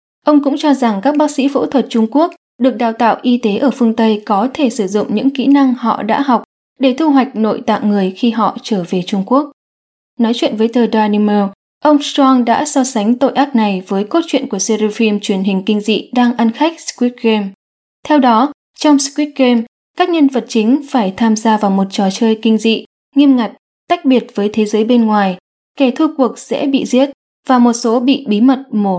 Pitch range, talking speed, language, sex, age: 210-270 Hz, 225 wpm, English, female, 10-29